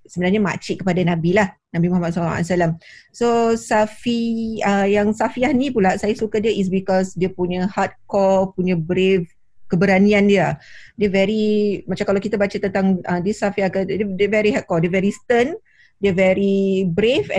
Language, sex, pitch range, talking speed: Malay, female, 180-205 Hz, 160 wpm